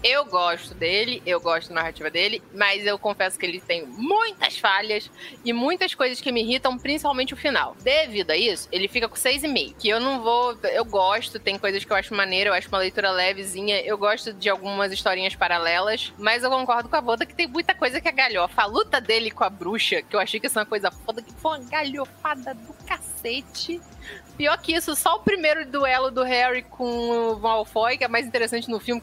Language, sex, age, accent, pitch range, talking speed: Portuguese, female, 20-39, Brazilian, 210-310 Hz, 230 wpm